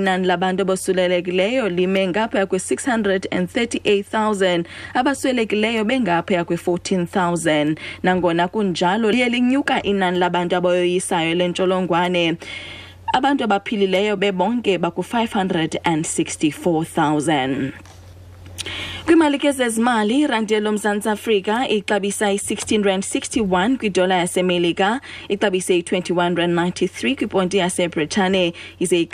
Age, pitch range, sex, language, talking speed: 20-39, 165-210 Hz, female, English, 105 wpm